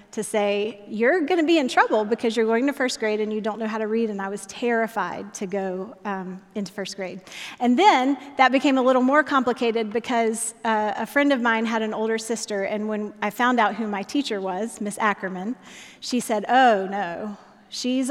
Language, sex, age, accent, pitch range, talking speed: English, female, 30-49, American, 210-250 Hz, 215 wpm